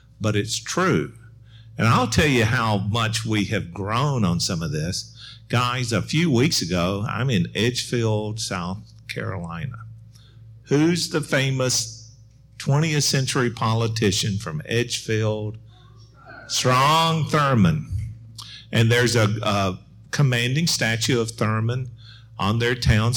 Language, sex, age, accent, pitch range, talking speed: English, male, 50-69, American, 105-125 Hz, 120 wpm